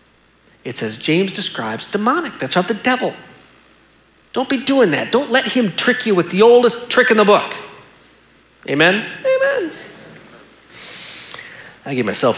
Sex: male